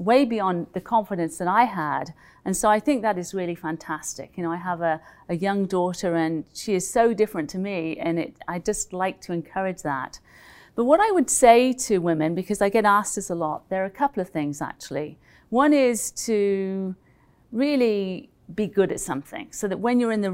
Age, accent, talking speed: 40-59, British, 210 wpm